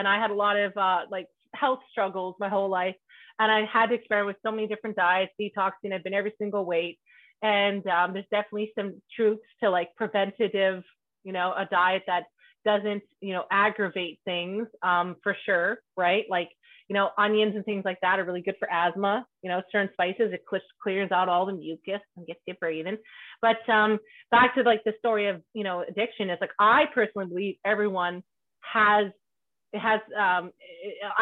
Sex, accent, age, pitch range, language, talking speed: female, American, 30-49, 185-220 Hz, English, 190 wpm